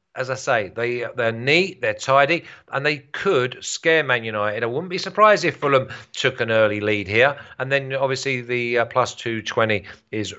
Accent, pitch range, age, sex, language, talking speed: British, 110-145 Hz, 40-59, male, English, 190 wpm